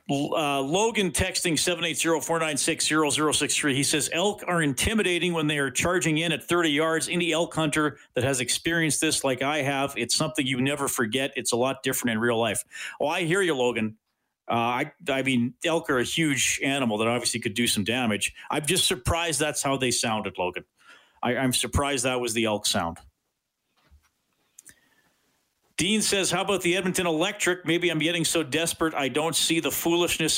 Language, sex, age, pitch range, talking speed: English, male, 40-59, 125-160 Hz, 180 wpm